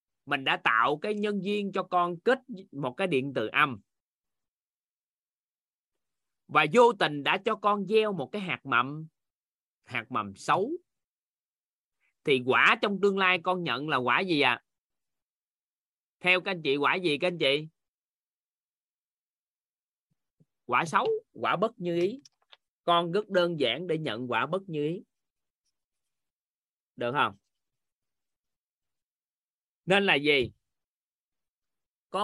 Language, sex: Vietnamese, male